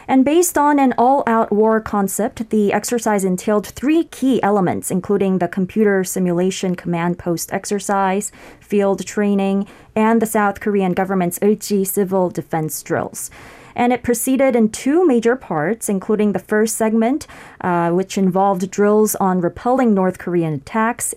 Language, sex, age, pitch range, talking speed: English, female, 20-39, 185-225 Hz, 140 wpm